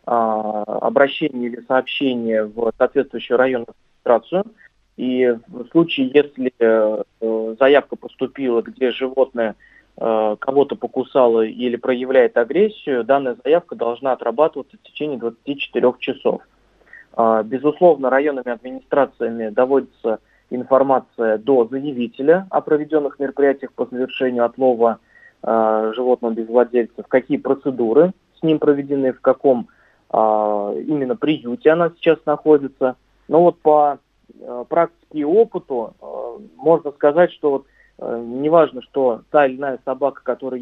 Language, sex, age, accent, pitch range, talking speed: Russian, male, 20-39, native, 120-150 Hz, 105 wpm